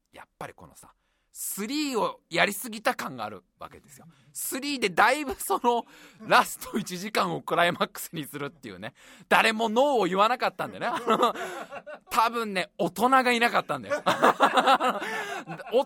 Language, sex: Japanese, male